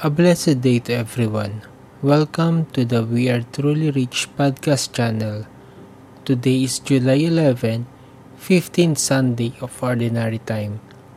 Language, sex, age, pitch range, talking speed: English, male, 20-39, 120-140 Hz, 125 wpm